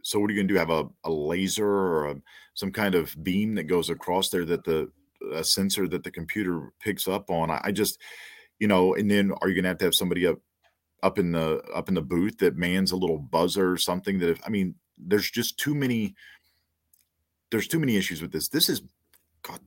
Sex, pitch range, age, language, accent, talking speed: male, 85-100 Hz, 40-59, English, American, 240 wpm